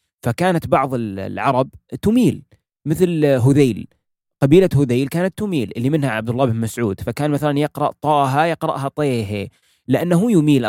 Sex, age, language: male, 20-39, Arabic